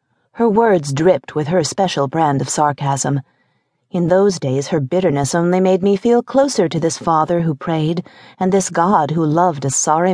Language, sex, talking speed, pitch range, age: English, female, 185 wpm, 145-190 Hz, 40-59